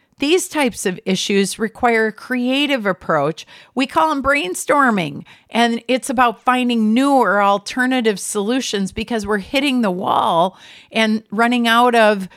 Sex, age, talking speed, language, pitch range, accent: female, 50-69, 140 wpm, English, 180-240 Hz, American